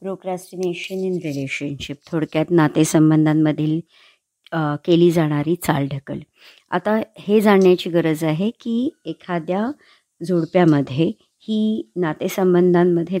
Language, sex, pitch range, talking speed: Marathi, male, 160-190 Hz, 90 wpm